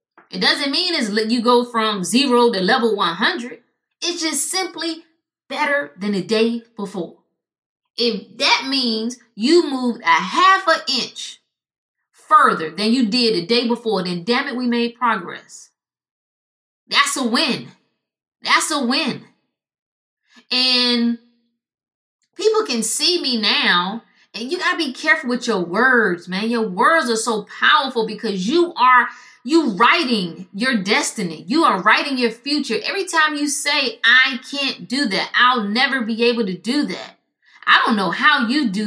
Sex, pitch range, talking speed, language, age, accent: female, 220-275 Hz, 155 wpm, English, 20-39, American